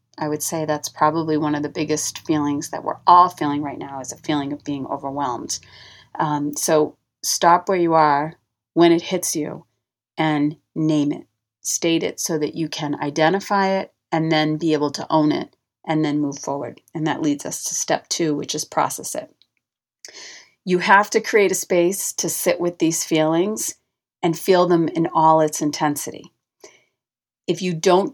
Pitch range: 150-180 Hz